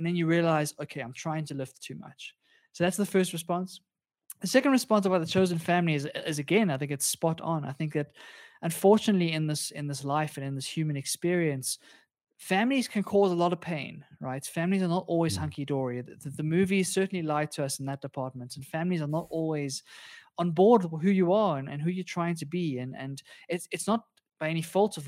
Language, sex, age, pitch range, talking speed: English, male, 20-39, 145-185 Hz, 230 wpm